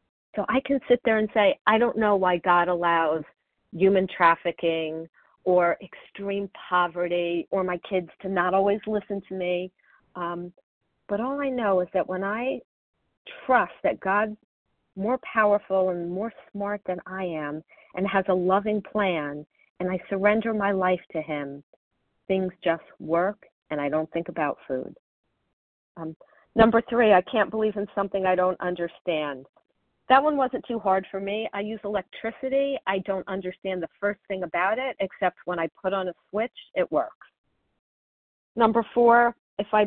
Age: 40-59